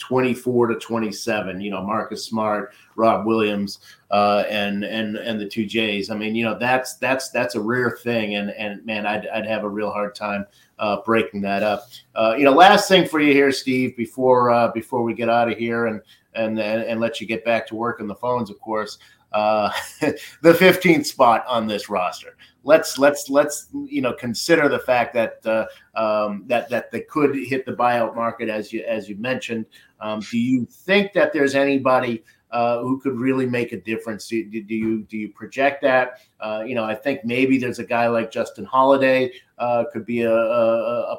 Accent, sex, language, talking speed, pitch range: American, male, English, 205 wpm, 110-135 Hz